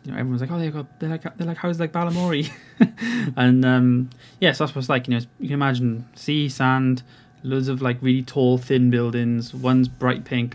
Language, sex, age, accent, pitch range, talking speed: English, male, 20-39, British, 125-135 Hz, 220 wpm